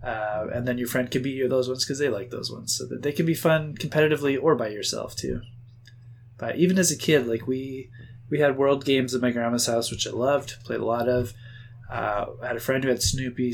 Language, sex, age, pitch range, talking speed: English, male, 20-39, 120-130 Hz, 250 wpm